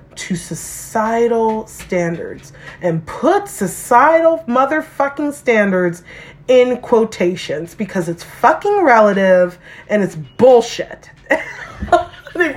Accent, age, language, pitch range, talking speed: American, 30-49, English, 175-235 Hz, 85 wpm